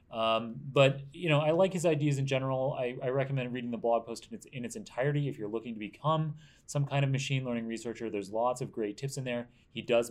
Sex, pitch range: male, 105-135 Hz